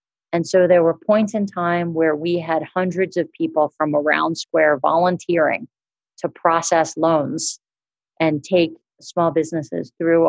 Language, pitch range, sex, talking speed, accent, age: English, 150-175 Hz, female, 145 wpm, American, 40-59